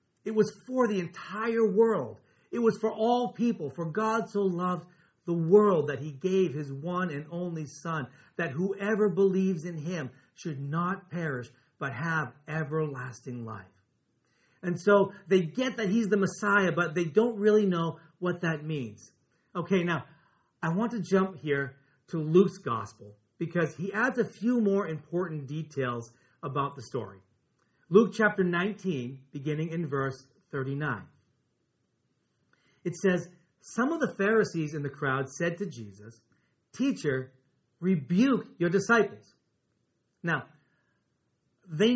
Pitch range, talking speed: 145-205 Hz, 140 wpm